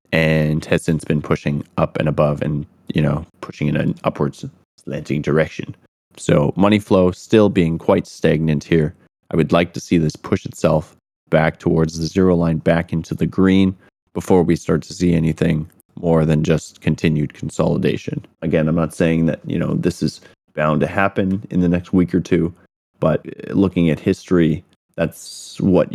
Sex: male